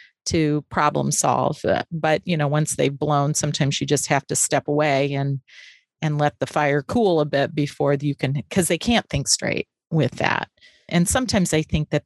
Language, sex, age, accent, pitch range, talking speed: English, female, 40-59, American, 145-180 Hz, 195 wpm